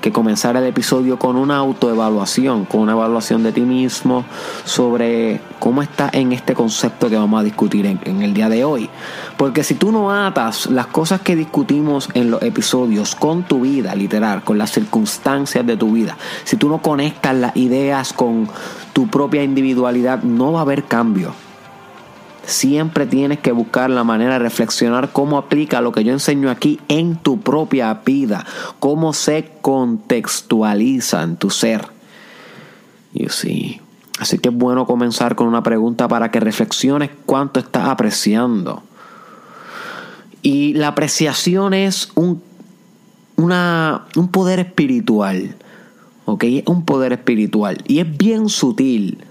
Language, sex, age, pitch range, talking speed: Spanish, male, 30-49, 120-180 Hz, 150 wpm